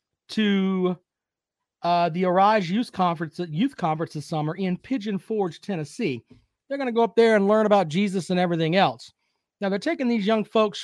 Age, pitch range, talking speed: 40-59, 170-220 Hz, 185 wpm